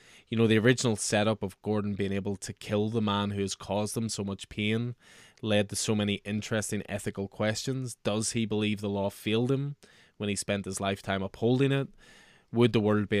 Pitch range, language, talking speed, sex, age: 100-115 Hz, English, 205 wpm, male, 20-39